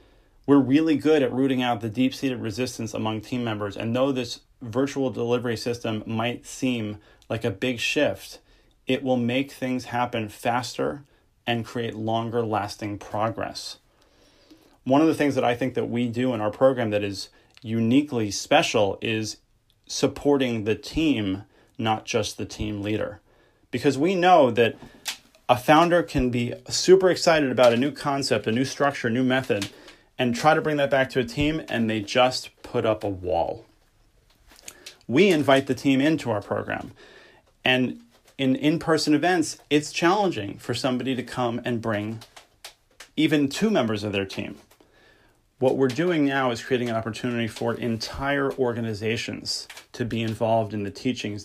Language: English